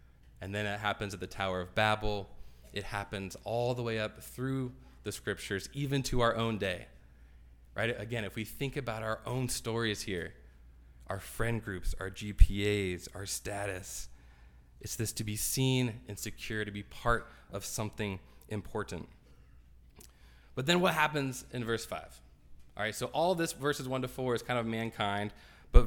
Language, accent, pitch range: English, American, 90-135 Hz